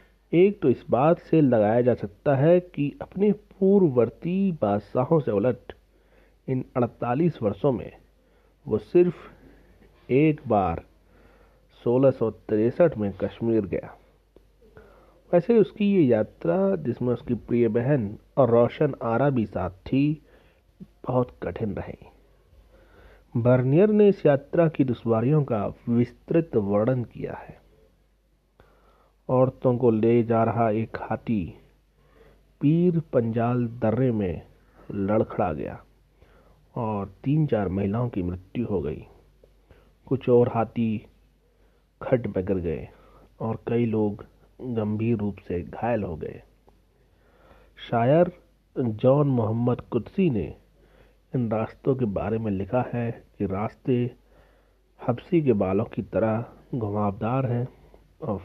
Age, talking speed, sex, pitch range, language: 40-59, 115 wpm, male, 110-140 Hz, Hindi